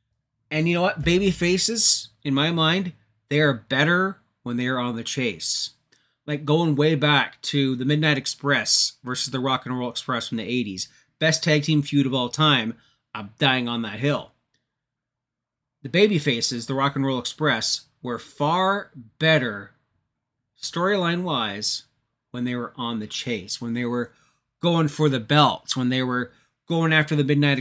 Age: 30-49